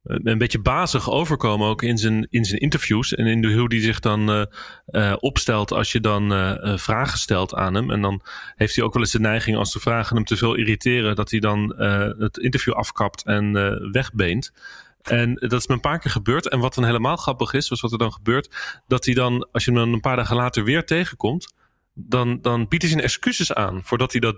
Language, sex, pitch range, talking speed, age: Dutch, male, 115-140 Hz, 240 wpm, 30-49